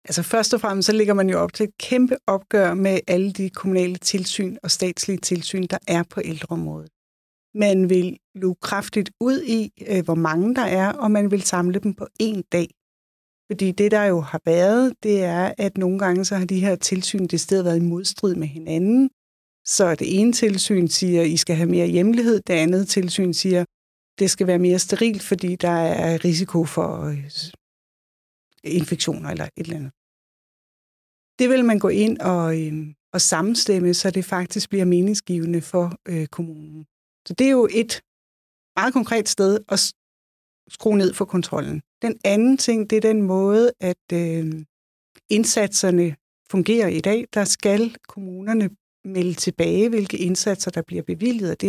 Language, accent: Danish, native